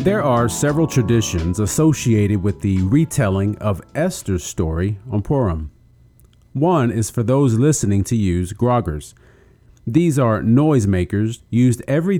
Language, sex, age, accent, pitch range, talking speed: English, male, 40-59, American, 95-125 Hz, 130 wpm